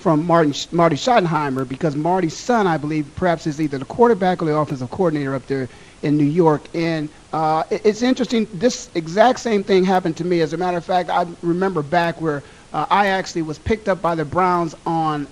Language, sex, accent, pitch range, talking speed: English, male, American, 155-195 Hz, 205 wpm